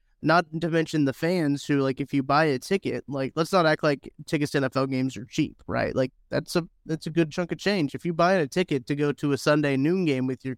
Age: 20-39